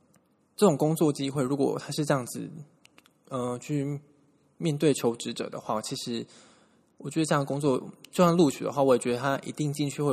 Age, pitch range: 20-39, 125-155 Hz